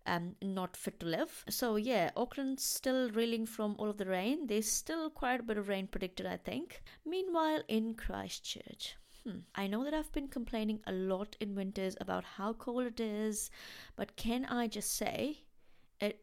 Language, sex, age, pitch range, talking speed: English, female, 20-39, 195-240 Hz, 180 wpm